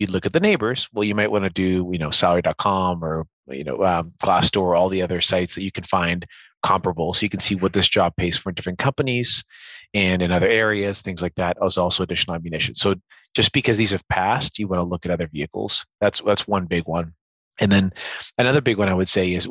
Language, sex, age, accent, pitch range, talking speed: English, male, 30-49, American, 90-105 Hz, 245 wpm